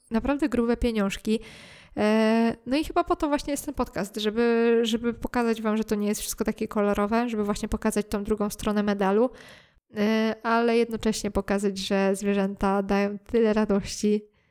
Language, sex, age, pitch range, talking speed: Polish, female, 20-39, 205-225 Hz, 155 wpm